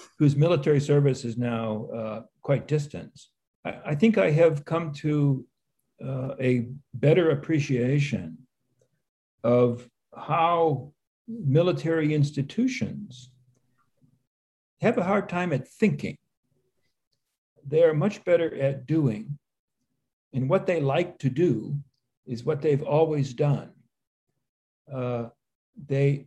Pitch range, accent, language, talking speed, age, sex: 130-155 Hz, American, English, 105 wpm, 60-79, male